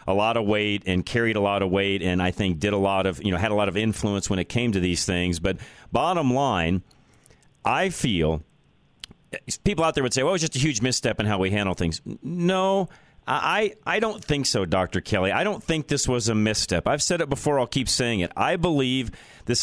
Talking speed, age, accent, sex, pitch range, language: 240 wpm, 40-59, American, male, 110-145 Hz, English